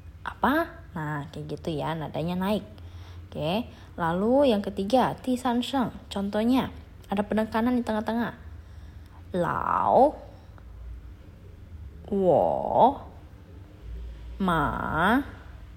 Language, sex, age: Indonesian, female, 20-39